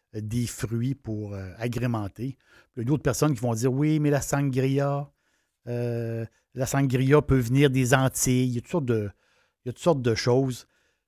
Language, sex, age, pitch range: French, male, 60-79, 120-150 Hz